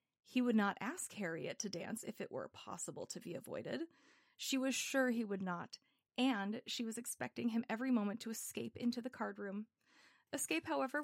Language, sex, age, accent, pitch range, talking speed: English, female, 30-49, American, 220-265 Hz, 190 wpm